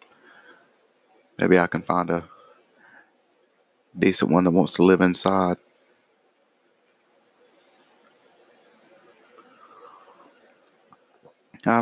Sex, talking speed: male, 65 wpm